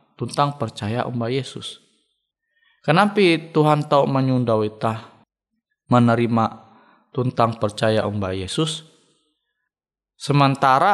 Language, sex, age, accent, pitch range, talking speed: Indonesian, male, 20-39, native, 125-190 Hz, 75 wpm